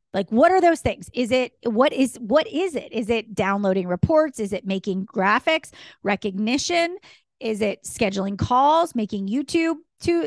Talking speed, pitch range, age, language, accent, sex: 165 wpm, 205-275 Hz, 30-49, English, American, female